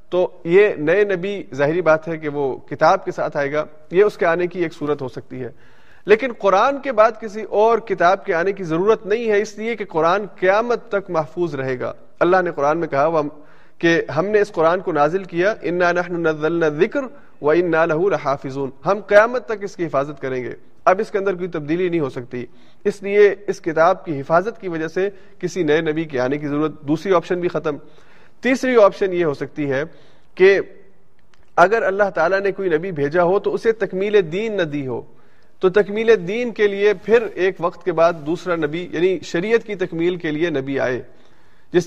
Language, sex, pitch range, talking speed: Urdu, male, 150-200 Hz, 210 wpm